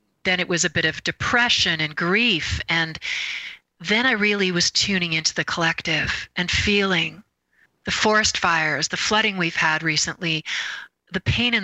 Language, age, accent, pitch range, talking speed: English, 40-59, American, 165-205 Hz, 160 wpm